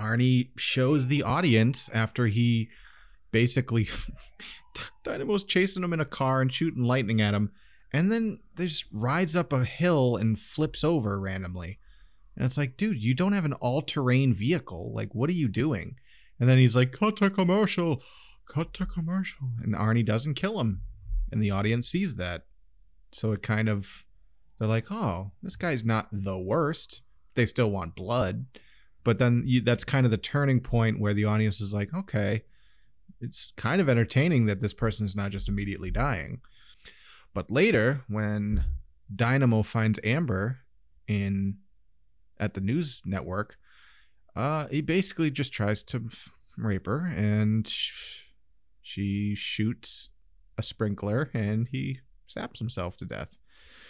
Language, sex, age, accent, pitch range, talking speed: English, male, 30-49, American, 100-135 Hz, 155 wpm